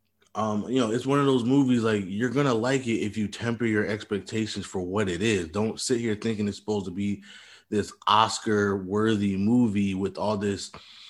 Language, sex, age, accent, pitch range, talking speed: English, male, 20-39, American, 100-115 Hz, 205 wpm